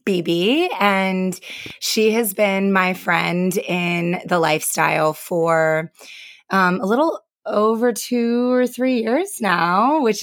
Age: 20-39